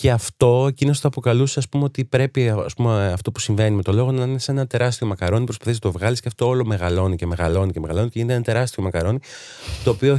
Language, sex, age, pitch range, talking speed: Greek, male, 30-49, 95-120 Hz, 240 wpm